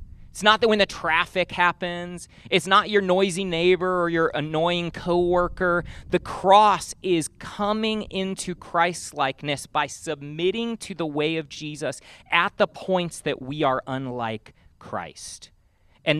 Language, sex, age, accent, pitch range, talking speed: English, male, 30-49, American, 125-195 Hz, 140 wpm